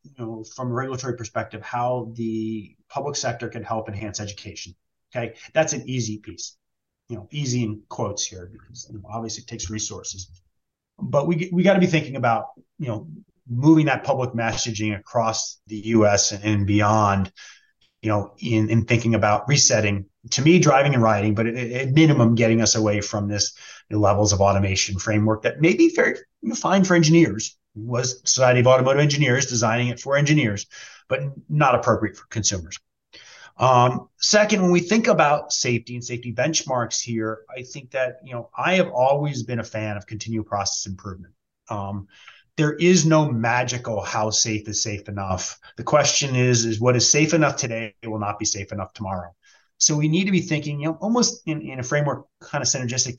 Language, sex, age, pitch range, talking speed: English, male, 30-49, 110-140 Hz, 190 wpm